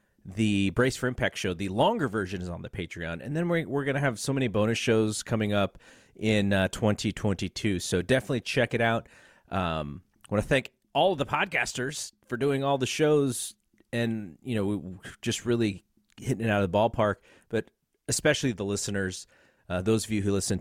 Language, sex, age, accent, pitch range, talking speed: English, male, 30-49, American, 95-130 Hz, 200 wpm